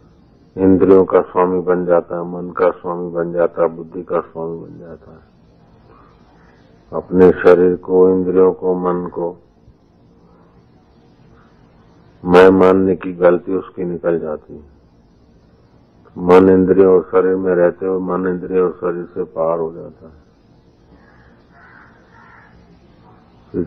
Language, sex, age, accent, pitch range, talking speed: Hindi, male, 50-69, native, 85-95 Hz, 125 wpm